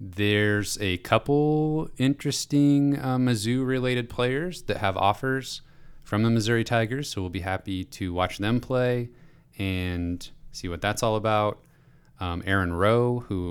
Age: 30-49